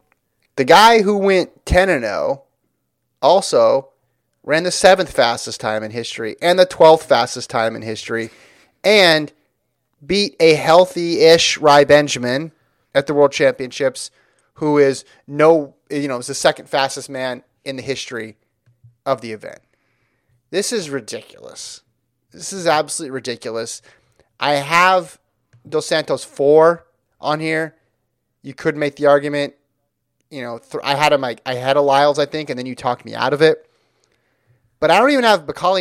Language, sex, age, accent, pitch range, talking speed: English, male, 30-49, American, 125-170 Hz, 160 wpm